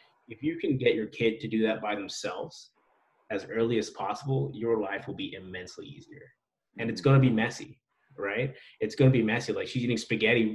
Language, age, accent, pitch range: English, 20-39, American, 110-140 Hz